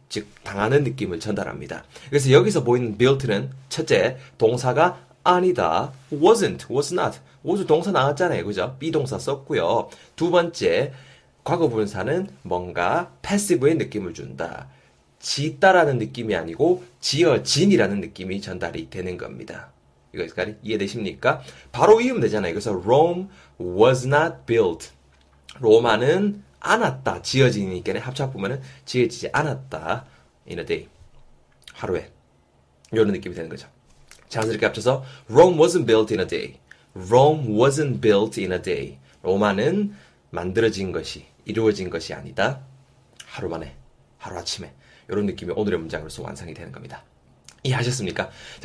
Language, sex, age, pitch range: Korean, male, 30-49, 95-155 Hz